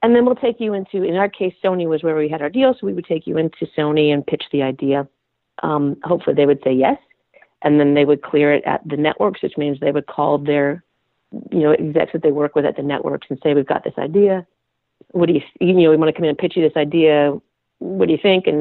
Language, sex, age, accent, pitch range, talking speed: English, female, 40-59, American, 150-200 Hz, 270 wpm